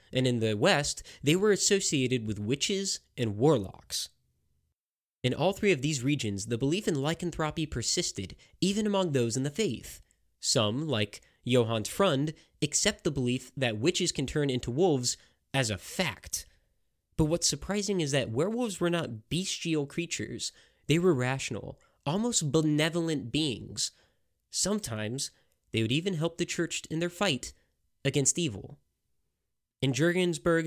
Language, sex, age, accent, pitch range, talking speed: English, male, 20-39, American, 120-170 Hz, 145 wpm